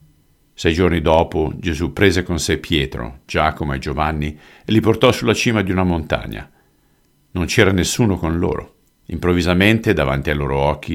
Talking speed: 160 wpm